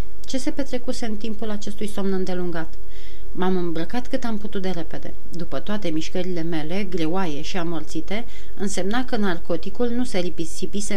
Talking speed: 155 wpm